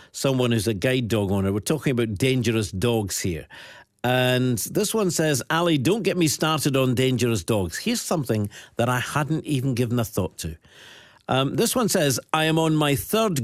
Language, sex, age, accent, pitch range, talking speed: English, male, 50-69, British, 115-160 Hz, 190 wpm